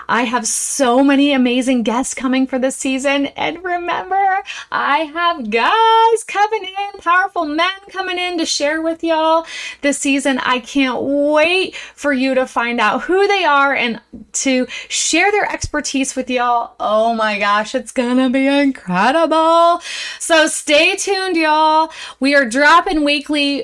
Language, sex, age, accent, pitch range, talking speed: English, female, 30-49, American, 245-335 Hz, 150 wpm